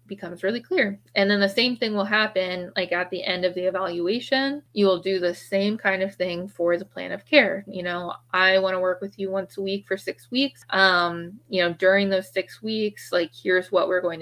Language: English